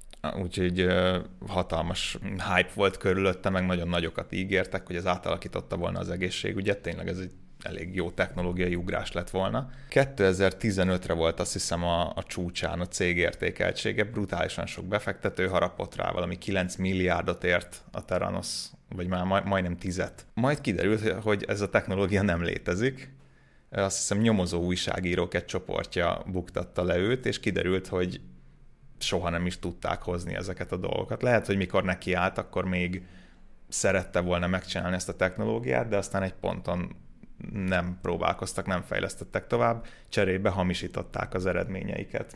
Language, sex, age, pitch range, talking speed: Hungarian, male, 30-49, 90-100 Hz, 145 wpm